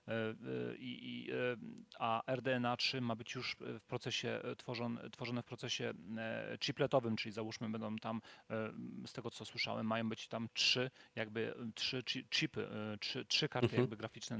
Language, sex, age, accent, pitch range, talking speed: Polish, male, 40-59, native, 110-130 Hz, 140 wpm